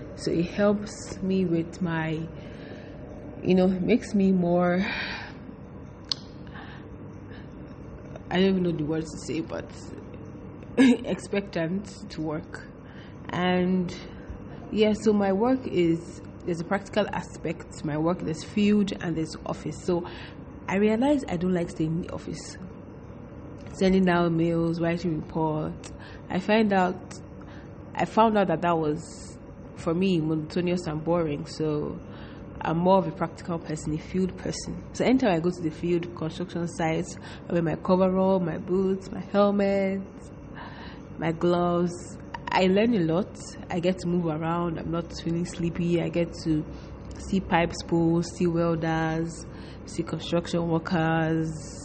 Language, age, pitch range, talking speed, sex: English, 20-39, 160-185 Hz, 140 wpm, female